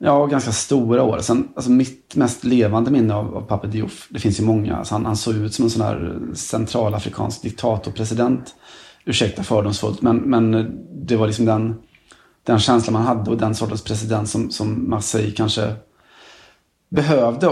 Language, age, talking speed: Swedish, 30-49, 170 wpm